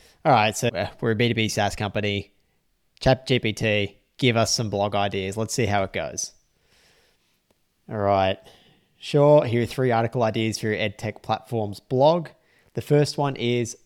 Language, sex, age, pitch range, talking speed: English, male, 20-39, 105-130 Hz, 155 wpm